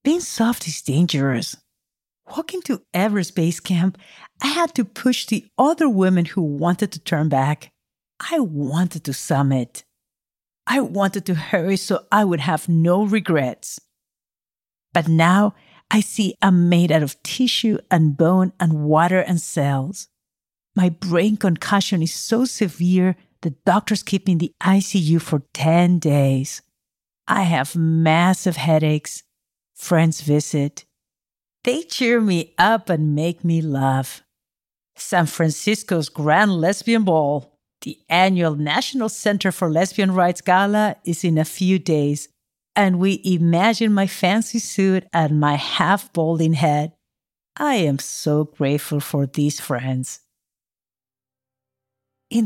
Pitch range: 150-195 Hz